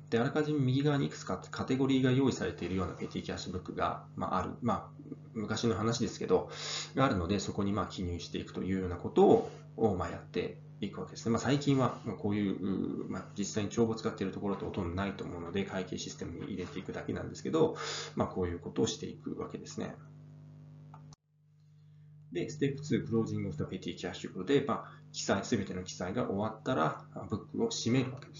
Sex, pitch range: male, 100-150 Hz